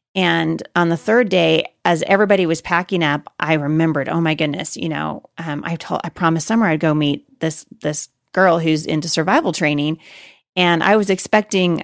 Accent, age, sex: American, 30-49, female